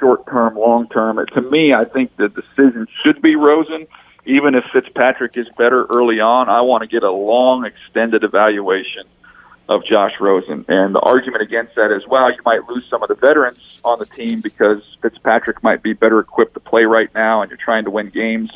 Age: 50-69